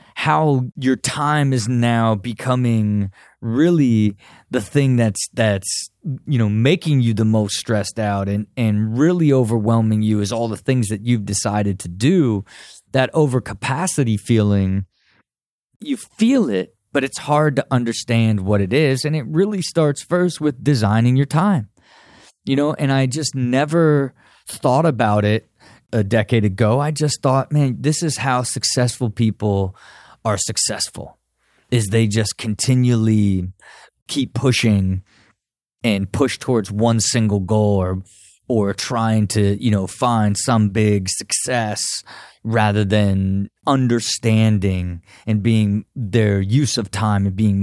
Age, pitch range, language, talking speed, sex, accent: 20-39, 105-130 Hz, English, 140 wpm, male, American